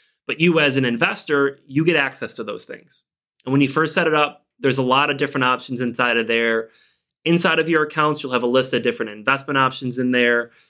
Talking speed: 230 wpm